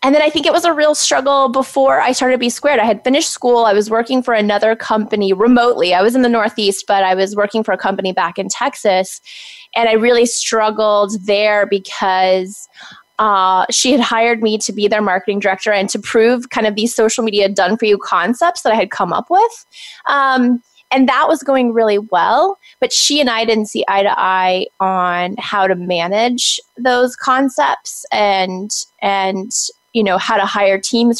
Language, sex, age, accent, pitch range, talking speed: English, female, 20-39, American, 195-245 Hz, 195 wpm